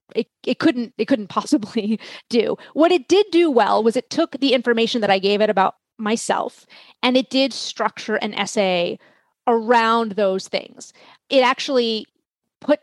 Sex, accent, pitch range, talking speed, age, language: female, American, 210-250 Hz, 165 wpm, 30-49, English